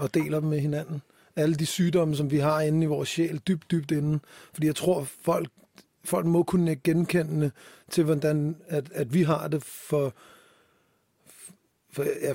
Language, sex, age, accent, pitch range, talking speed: Danish, male, 30-49, native, 145-165 Hz, 180 wpm